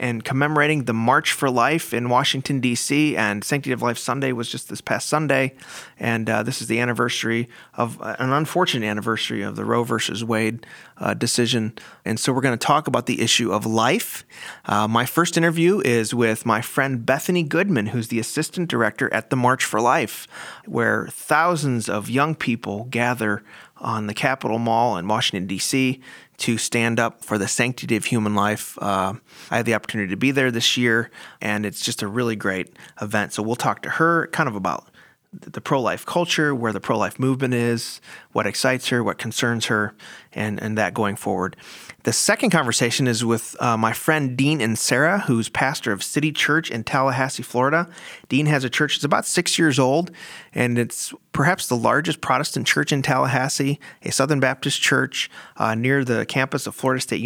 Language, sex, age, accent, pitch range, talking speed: English, male, 30-49, American, 115-140 Hz, 190 wpm